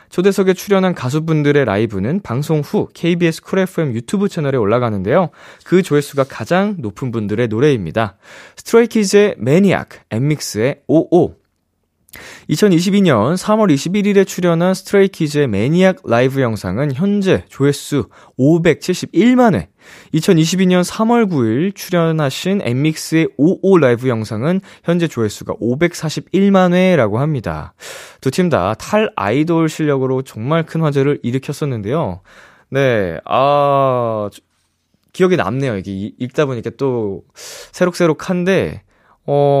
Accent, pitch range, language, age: native, 115-180 Hz, Korean, 20-39